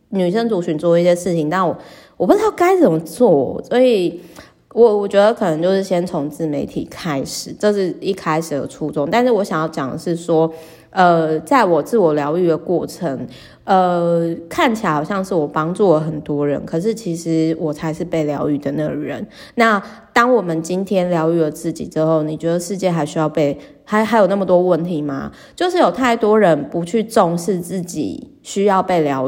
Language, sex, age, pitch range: Chinese, female, 20-39, 155-215 Hz